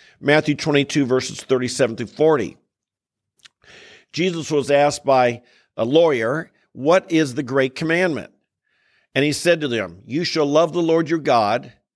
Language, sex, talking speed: English, male, 145 wpm